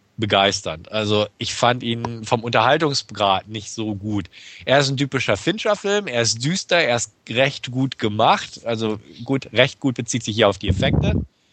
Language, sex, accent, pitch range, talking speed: German, male, German, 110-140 Hz, 170 wpm